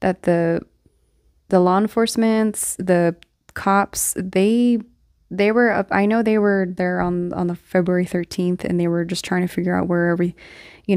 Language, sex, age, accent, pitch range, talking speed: English, female, 20-39, American, 175-190 Hz, 175 wpm